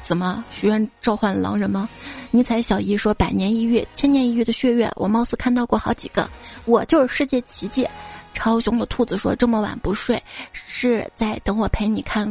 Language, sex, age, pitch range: Chinese, female, 20-39, 210-250 Hz